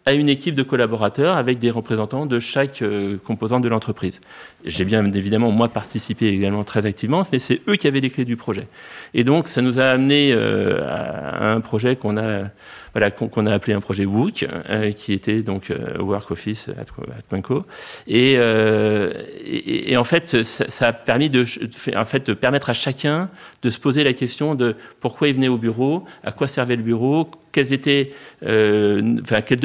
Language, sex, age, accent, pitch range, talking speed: French, male, 40-59, French, 105-130 Hz, 200 wpm